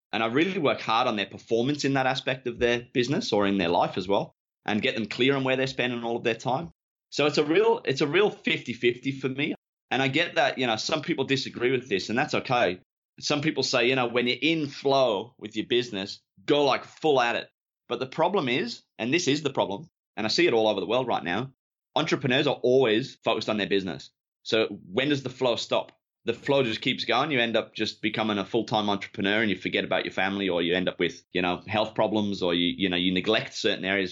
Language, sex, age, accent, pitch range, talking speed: English, male, 20-39, Australian, 100-135 Hz, 250 wpm